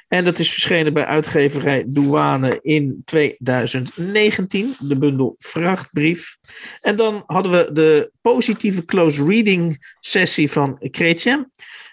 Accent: Dutch